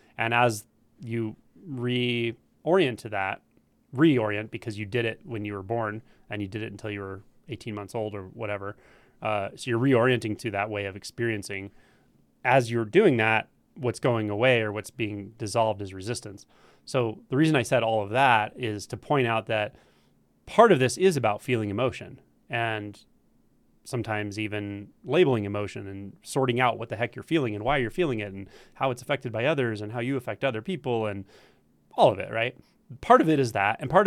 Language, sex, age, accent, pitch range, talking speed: English, male, 30-49, American, 105-125 Hz, 195 wpm